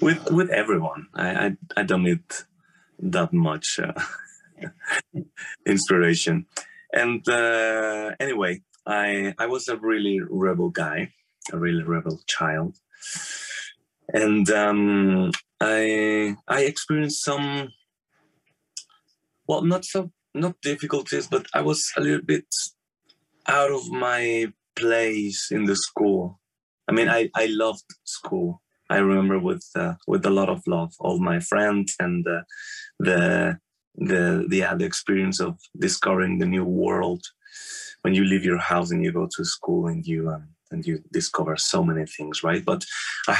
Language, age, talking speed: English, 30-49, 140 wpm